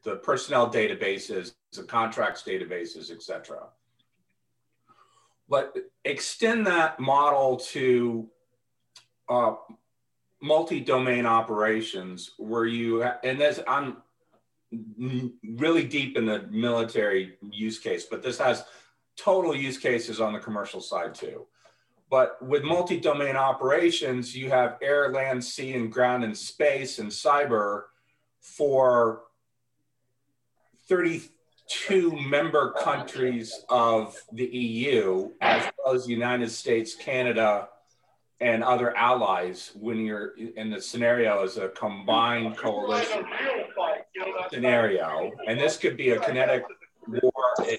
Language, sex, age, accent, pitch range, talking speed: English, male, 40-59, American, 115-160 Hz, 110 wpm